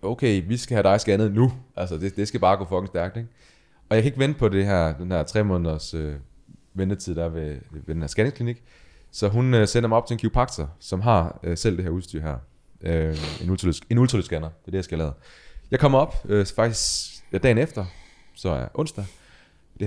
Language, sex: Danish, male